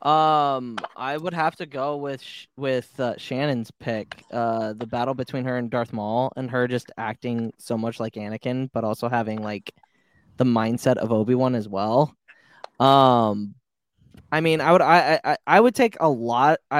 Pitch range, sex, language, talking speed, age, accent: 115-155 Hz, male, English, 180 wpm, 20-39, American